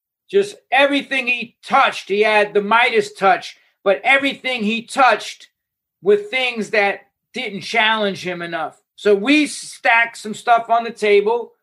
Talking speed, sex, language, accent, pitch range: 145 wpm, male, English, American, 205-270 Hz